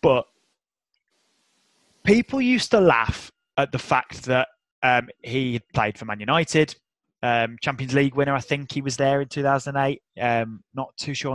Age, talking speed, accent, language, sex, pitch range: 20-39, 160 wpm, British, English, male, 120-150 Hz